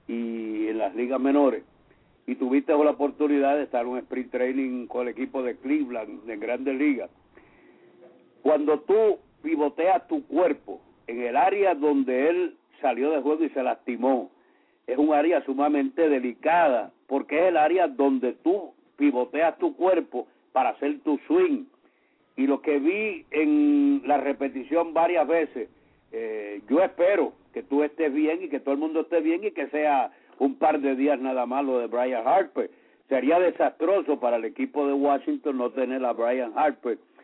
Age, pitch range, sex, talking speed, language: 60-79, 130-175 Hz, male, 170 wpm, English